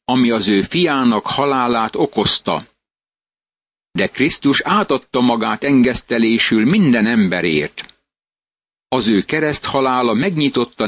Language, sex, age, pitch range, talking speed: Hungarian, male, 60-79, 115-140 Hz, 100 wpm